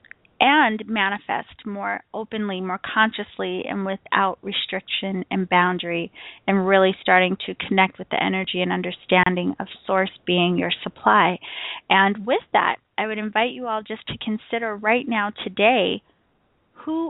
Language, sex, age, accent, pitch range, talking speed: English, female, 20-39, American, 190-215 Hz, 145 wpm